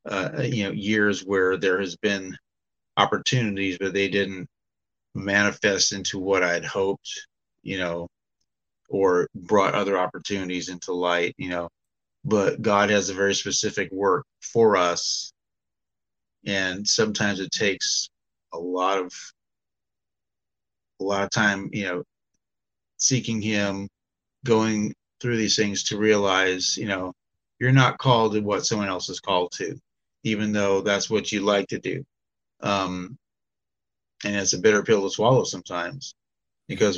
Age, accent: 30-49, American